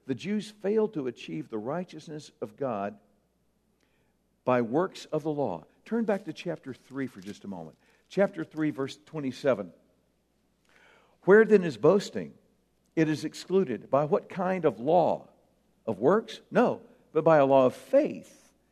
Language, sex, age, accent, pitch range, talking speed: English, male, 60-79, American, 140-205 Hz, 155 wpm